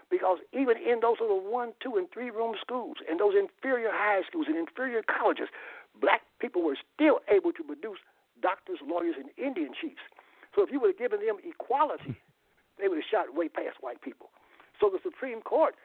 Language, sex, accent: English, male, American